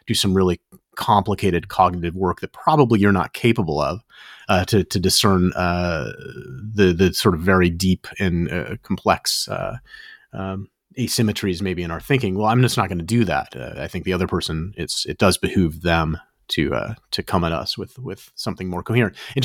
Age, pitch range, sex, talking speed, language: 30-49, 85-105 Hz, male, 195 wpm, English